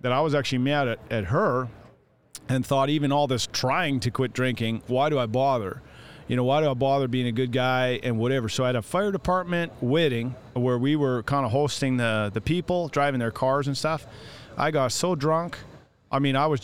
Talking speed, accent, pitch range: 225 wpm, American, 125-150 Hz